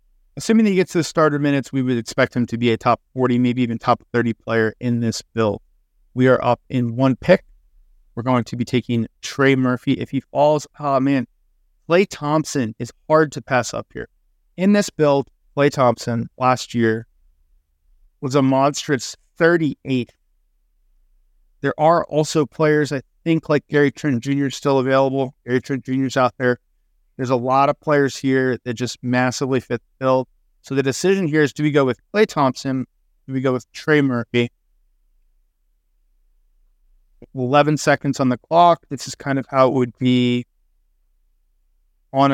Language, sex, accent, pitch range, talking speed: English, male, American, 110-145 Hz, 175 wpm